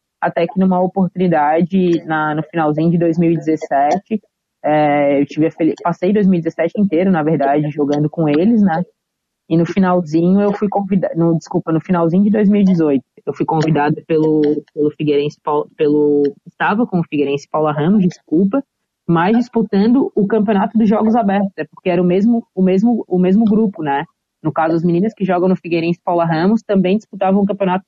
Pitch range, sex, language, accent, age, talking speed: 160-205 Hz, female, Portuguese, Brazilian, 20-39, 175 wpm